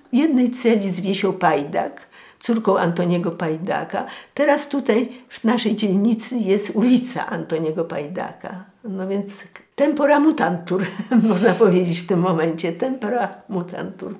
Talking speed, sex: 120 wpm, female